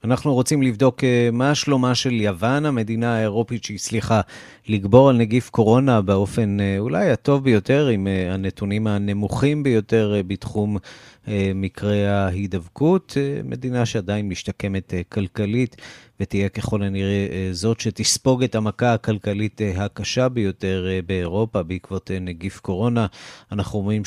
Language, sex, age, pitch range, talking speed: Hebrew, male, 30-49, 100-120 Hz, 110 wpm